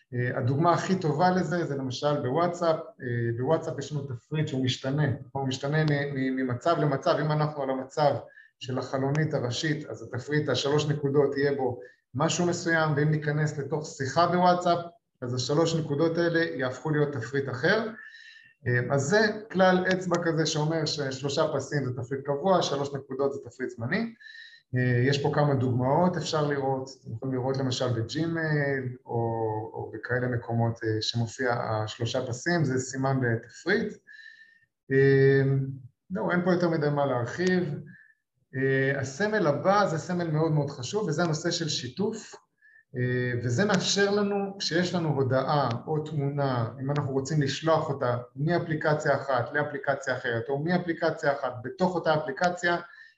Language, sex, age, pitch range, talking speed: Hebrew, male, 20-39, 130-170 Hz, 140 wpm